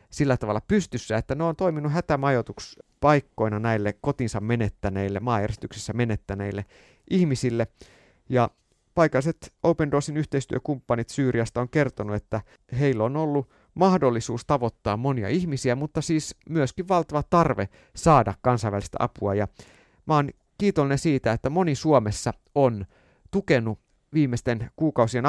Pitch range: 110-145 Hz